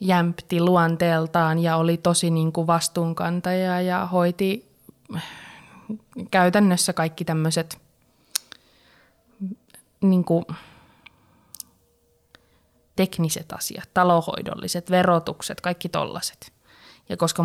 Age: 20-39